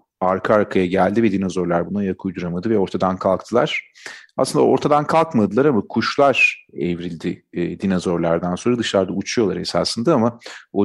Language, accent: Turkish, native